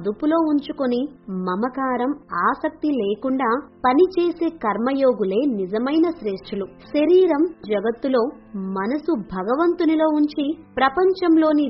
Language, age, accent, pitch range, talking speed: Telugu, 20-39, native, 210-290 Hz, 80 wpm